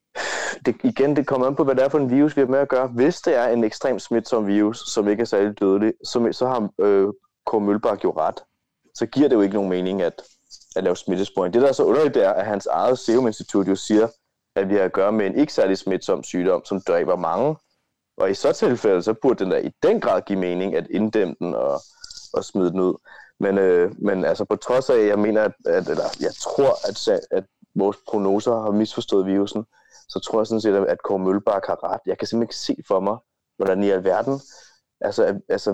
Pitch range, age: 105-140 Hz, 30-49